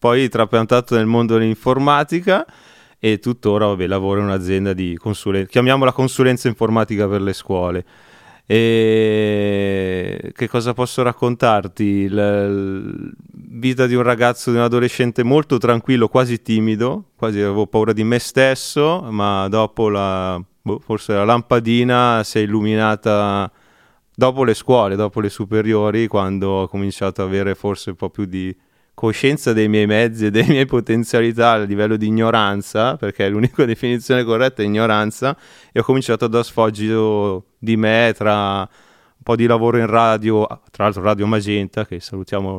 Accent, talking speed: native, 145 wpm